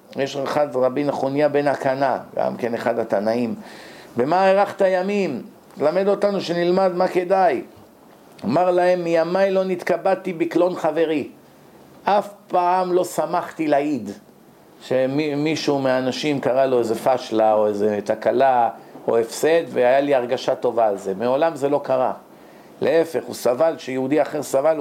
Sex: male